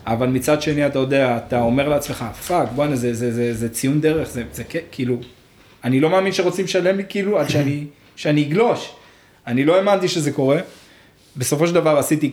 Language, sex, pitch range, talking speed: Hebrew, male, 120-160 Hz, 190 wpm